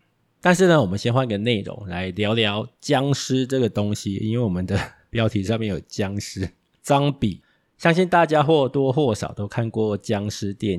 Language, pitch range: Chinese, 100-125 Hz